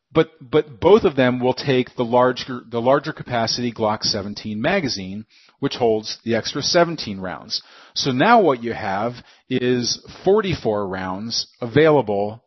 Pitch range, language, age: 115-140 Hz, English, 40-59